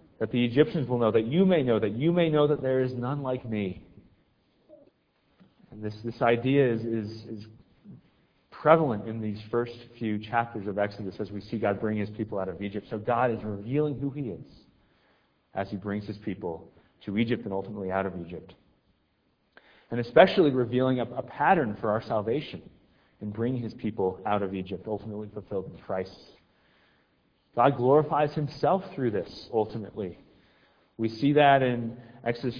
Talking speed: 175 wpm